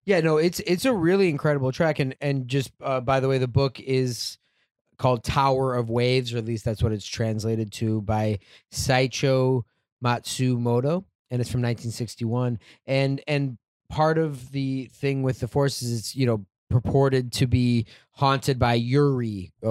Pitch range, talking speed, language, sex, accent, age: 115-135 Hz, 170 wpm, English, male, American, 20-39